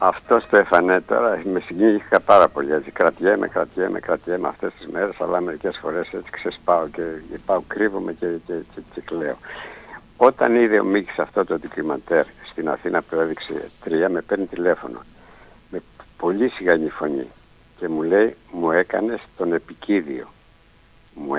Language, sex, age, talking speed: Greek, male, 60-79, 155 wpm